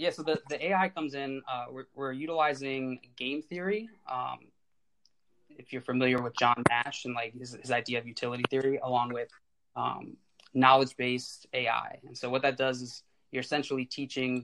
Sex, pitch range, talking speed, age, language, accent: male, 125-140 Hz, 175 wpm, 20-39, English, American